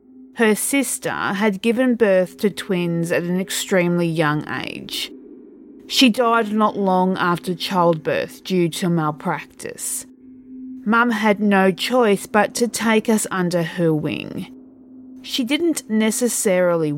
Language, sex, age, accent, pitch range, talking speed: English, female, 30-49, Australian, 180-255 Hz, 125 wpm